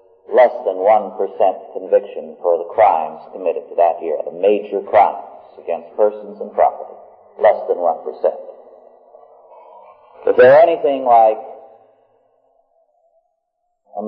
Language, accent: English, American